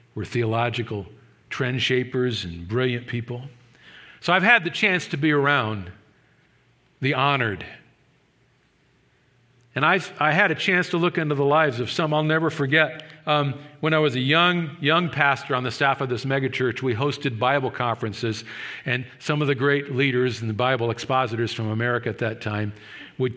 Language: English